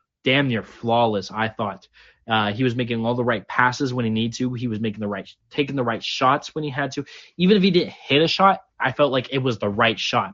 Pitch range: 110-140 Hz